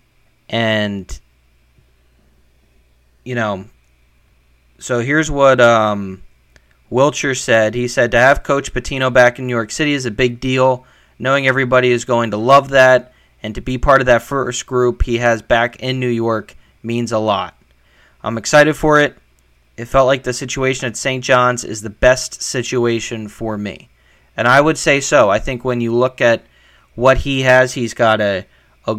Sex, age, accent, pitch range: male, 20-39, American, 105-130 Hz